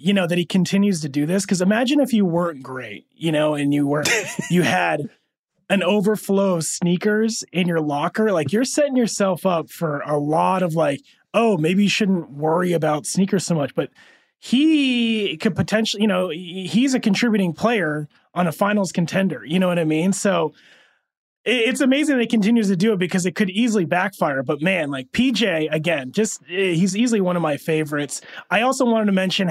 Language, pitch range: English, 155-205 Hz